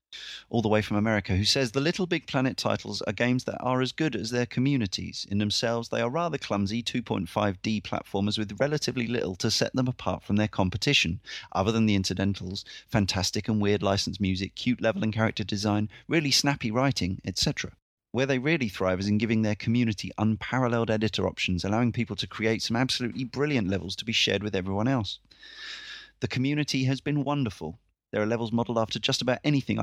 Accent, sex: British, male